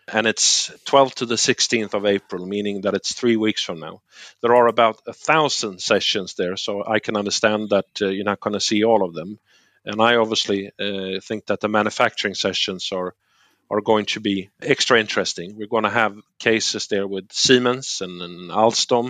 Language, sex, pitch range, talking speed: Finnish, male, 100-115 Hz, 200 wpm